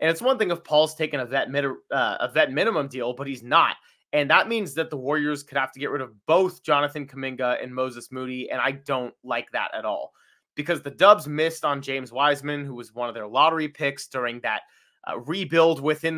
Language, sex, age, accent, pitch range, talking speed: English, male, 20-39, American, 130-165 Hz, 225 wpm